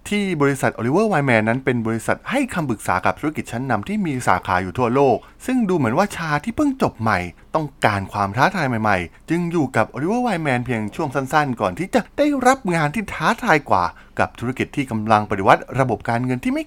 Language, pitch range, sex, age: Thai, 100-160 Hz, male, 20-39